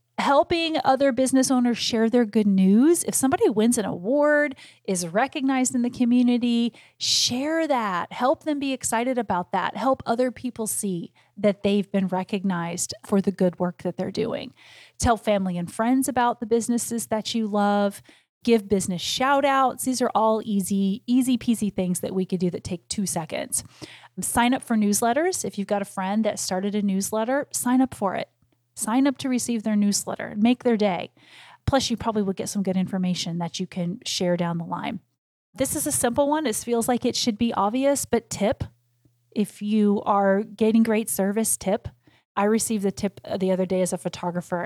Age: 30-49